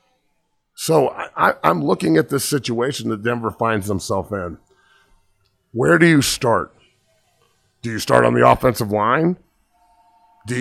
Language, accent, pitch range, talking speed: English, American, 105-130 Hz, 135 wpm